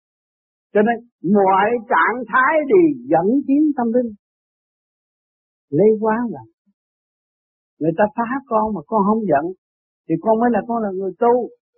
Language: Vietnamese